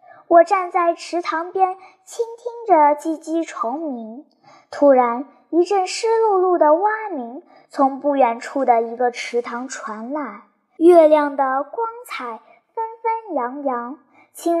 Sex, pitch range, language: male, 260-360 Hz, Chinese